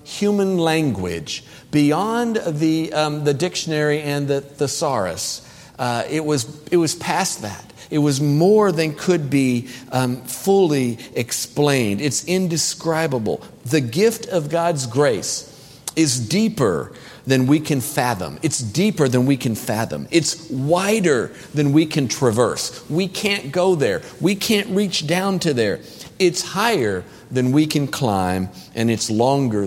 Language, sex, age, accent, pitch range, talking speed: English, male, 50-69, American, 115-160 Hz, 140 wpm